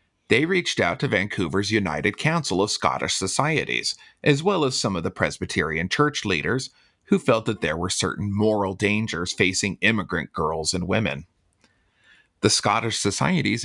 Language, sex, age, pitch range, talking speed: English, male, 40-59, 95-130 Hz, 155 wpm